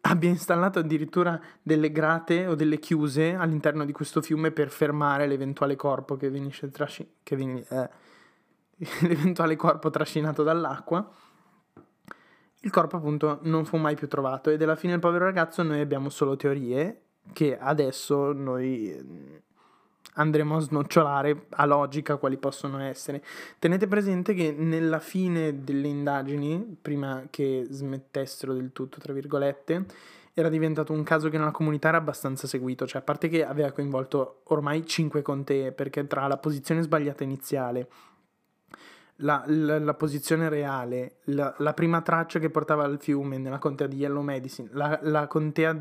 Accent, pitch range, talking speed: native, 140-160 Hz, 150 wpm